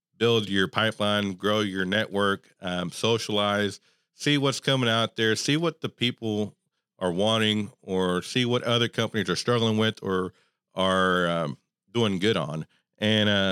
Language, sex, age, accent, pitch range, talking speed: English, male, 40-59, American, 95-120 Hz, 150 wpm